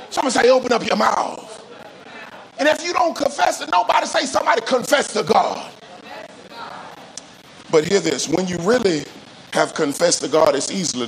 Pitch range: 185-260 Hz